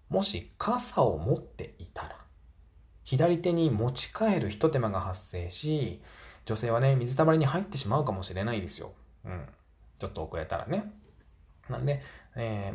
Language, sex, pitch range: Japanese, male, 95-145 Hz